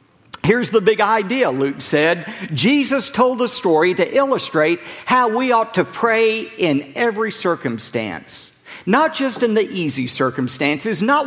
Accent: American